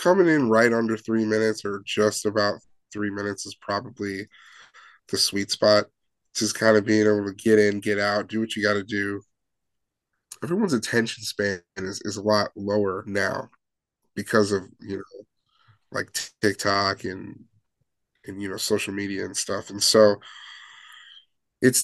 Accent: American